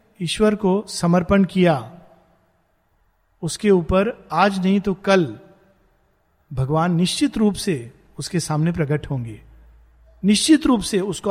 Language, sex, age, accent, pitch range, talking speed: Hindi, male, 50-69, native, 160-215 Hz, 115 wpm